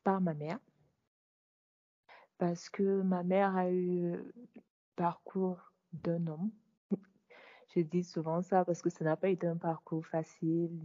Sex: female